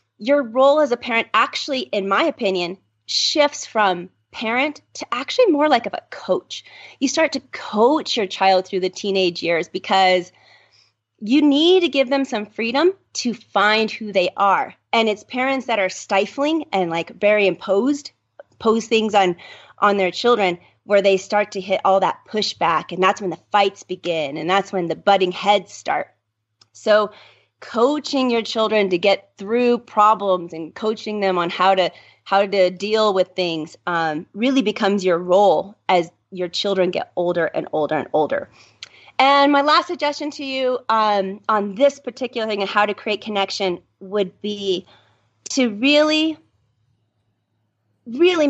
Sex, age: female, 30-49